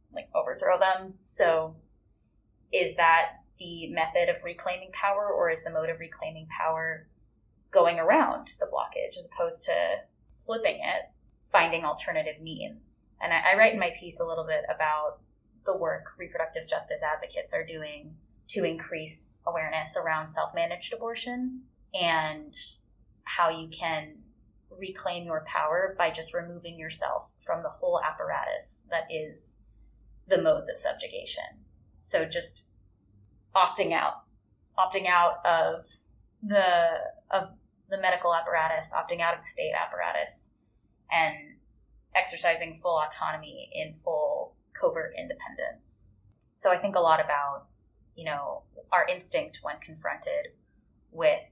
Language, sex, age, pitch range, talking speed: English, female, 20-39, 155-205 Hz, 135 wpm